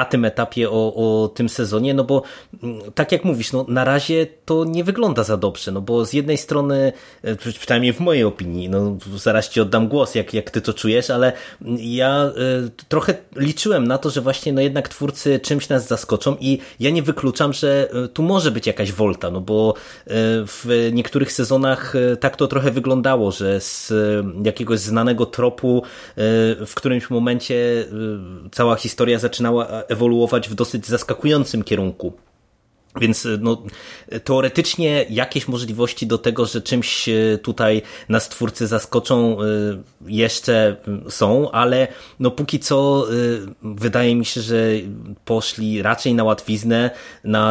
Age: 20-39